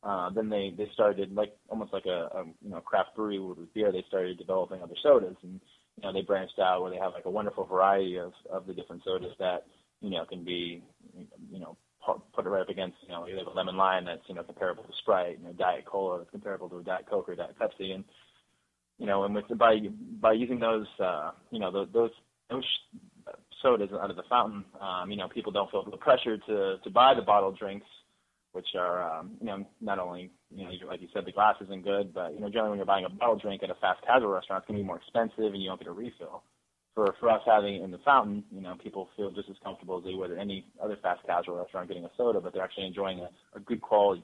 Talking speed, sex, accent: 245 wpm, male, American